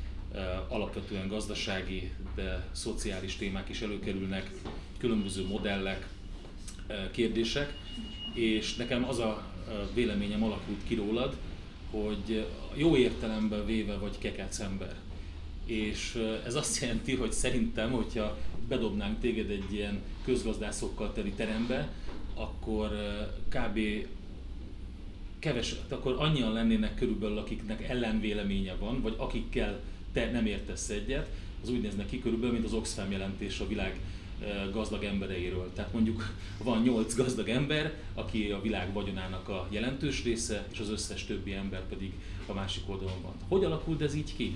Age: 30-49